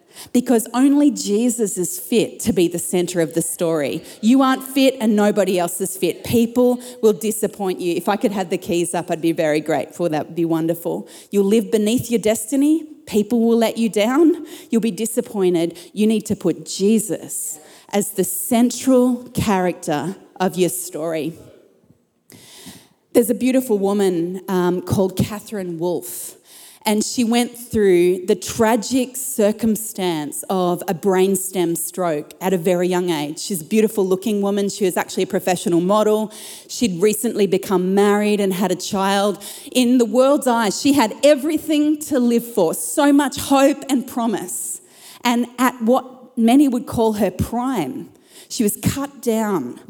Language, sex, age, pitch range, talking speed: English, female, 30-49, 185-245 Hz, 160 wpm